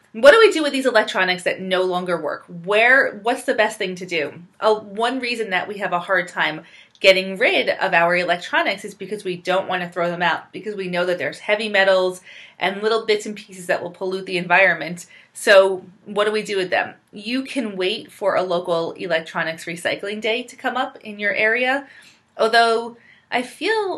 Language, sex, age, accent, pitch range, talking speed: English, female, 30-49, American, 175-220 Hz, 210 wpm